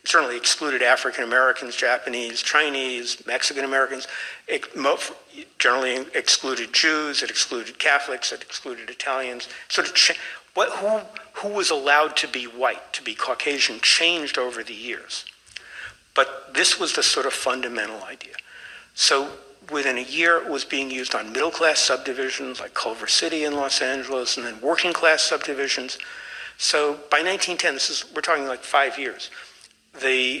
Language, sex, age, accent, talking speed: English, male, 60-79, American, 150 wpm